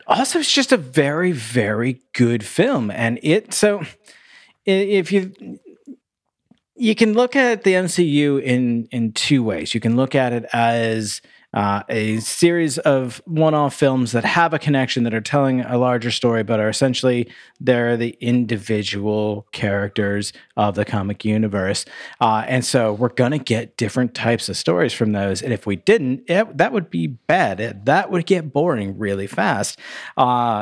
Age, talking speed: 40-59, 170 wpm